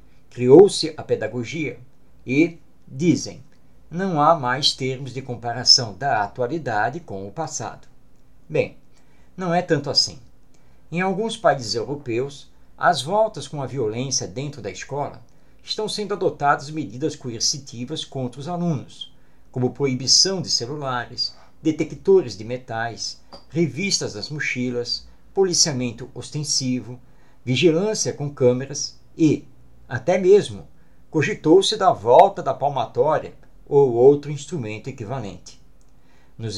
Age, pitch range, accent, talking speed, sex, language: 60-79, 125-170 Hz, Brazilian, 115 wpm, male, Portuguese